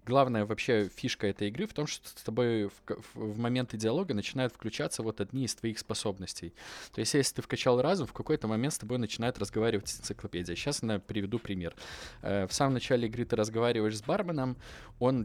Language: Russian